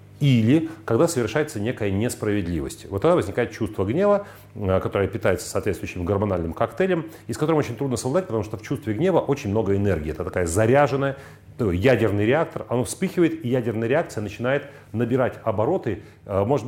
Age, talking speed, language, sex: 40-59, 155 wpm, Russian, male